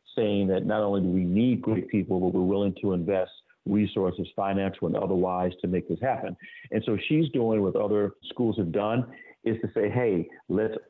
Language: English